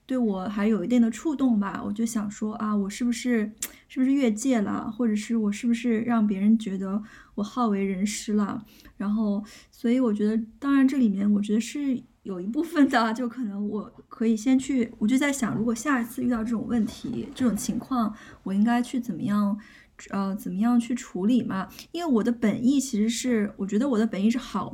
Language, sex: Chinese, female